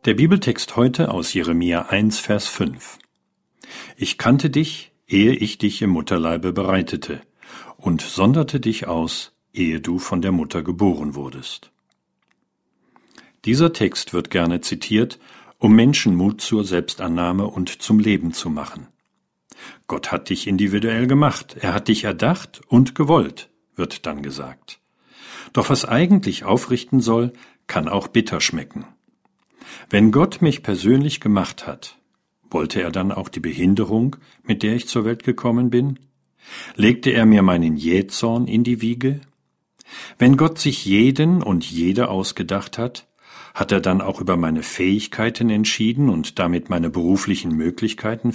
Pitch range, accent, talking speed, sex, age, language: 90-125 Hz, German, 140 wpm, male, 50-69, German